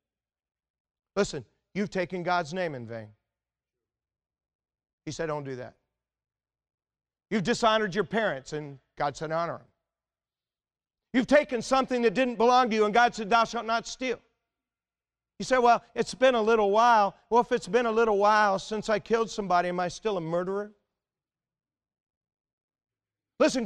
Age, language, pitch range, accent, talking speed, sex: 40-59, English, 165-245 Hz, American, 155 wpm, male